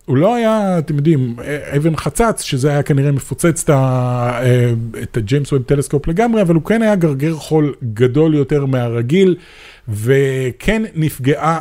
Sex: male